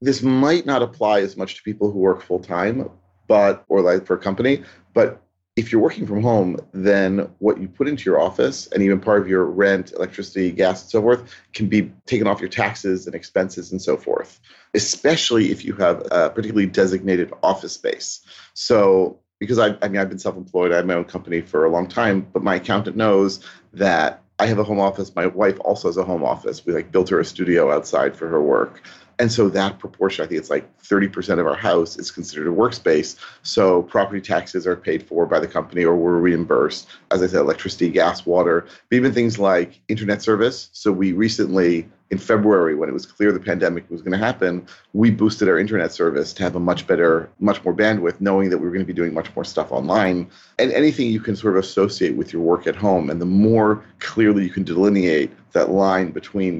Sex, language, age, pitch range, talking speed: male, English, 40-59, 90-105 Hz, 220 wpm